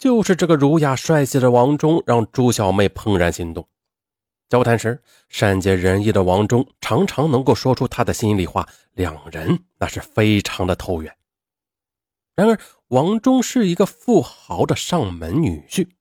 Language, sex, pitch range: Chinese, male, 95-145 Hz